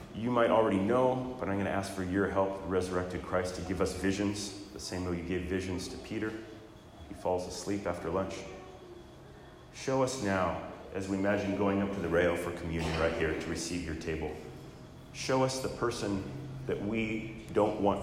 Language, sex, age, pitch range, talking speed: English, male, 30-49, 85-110 Hz, 195 wpm